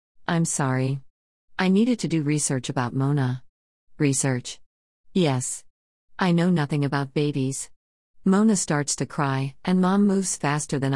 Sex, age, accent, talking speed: female, 50-69, American, 135 wpm